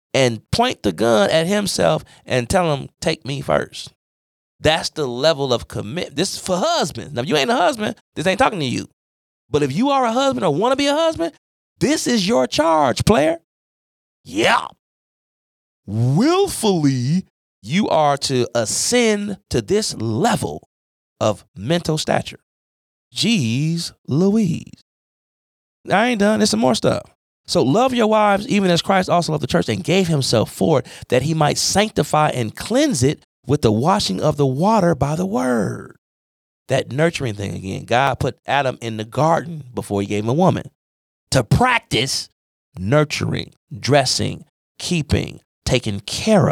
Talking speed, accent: 160 wpm, American